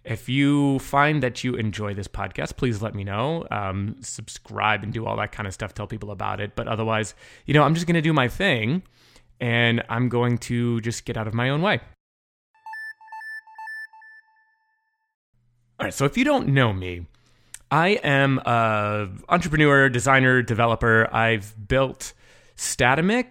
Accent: American